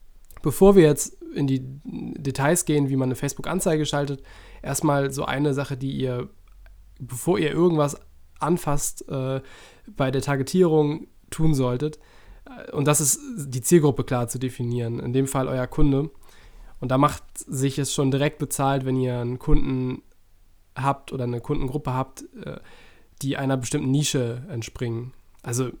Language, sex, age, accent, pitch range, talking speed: German, male, 20-39, German, 125-145 Hz, 150 wpm